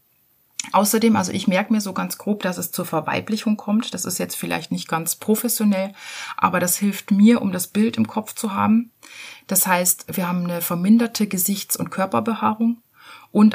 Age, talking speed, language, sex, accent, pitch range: 30-49, 180 wpm, German, female, German, 180-225 Hz